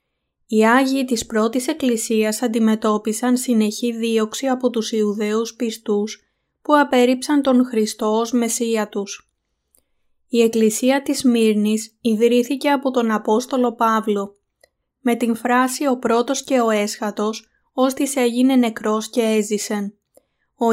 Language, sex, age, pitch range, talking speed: Greek, female, 20-39, 220-255 Hz, 120 wpm